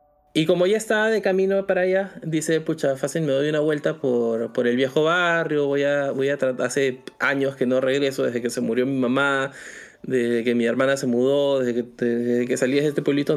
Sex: male